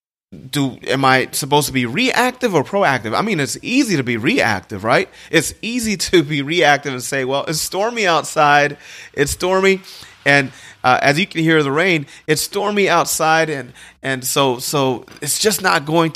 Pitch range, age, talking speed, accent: 125-160 Hz, 30-49, 180 wpm, American